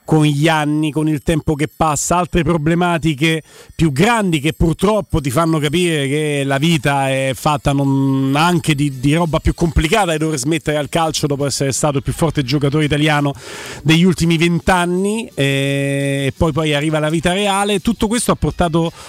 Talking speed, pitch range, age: 175 wpm, 150-185 Hz, 40-59